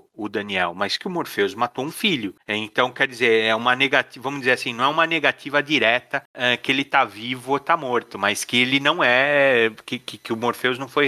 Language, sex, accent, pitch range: Portuguese, male, Brazilian, 115-140 Hz